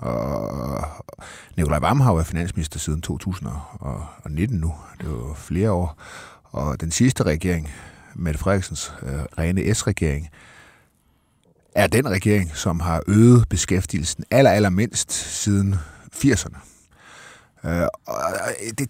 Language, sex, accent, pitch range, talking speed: Danish, male, native, 80-105 Hz, 120 wpm